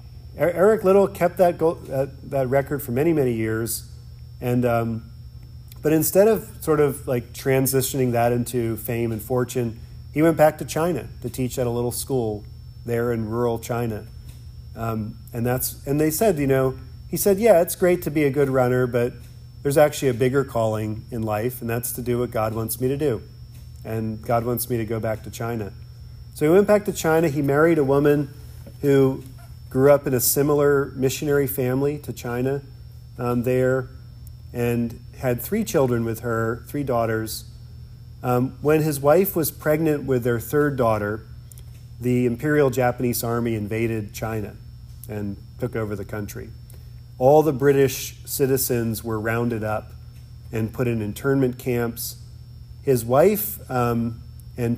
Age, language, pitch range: 40-59, English, 115-140 Hz